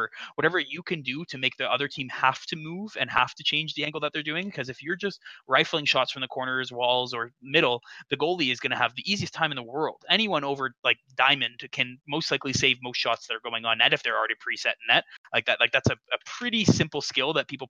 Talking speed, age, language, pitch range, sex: 260 wpm, 20-39, English, 120-145 Hz, male